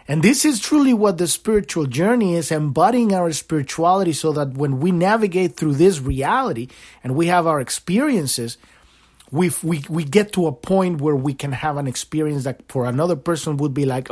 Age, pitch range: 30-49, 140-205 Hz